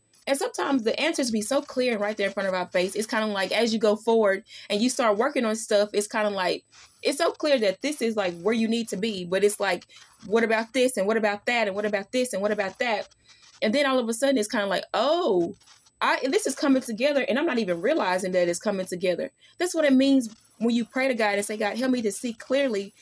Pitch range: 200-265 Hz